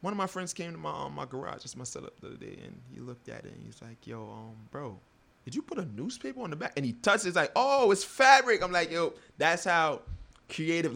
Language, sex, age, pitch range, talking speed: English, male, 20-39, 110-145 Hz, 275 wpm